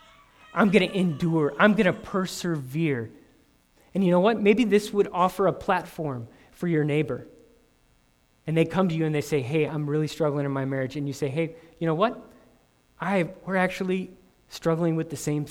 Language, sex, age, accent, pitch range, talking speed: English, male, 20-39, American, 125-180 Hz, 195 wpm